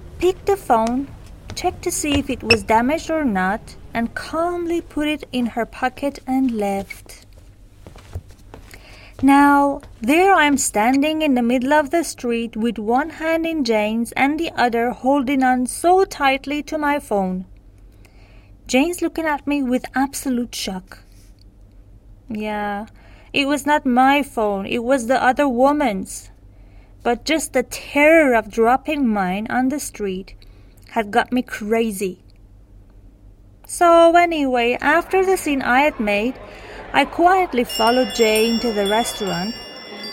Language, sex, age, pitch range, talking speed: Persian, female, 30-49, 185-280 Hz, 140 wpm